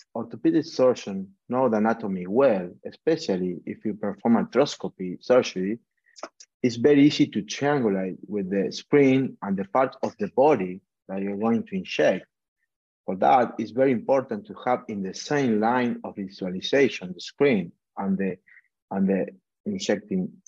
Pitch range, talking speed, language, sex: 100-140 Hz, 150 wpm, English, male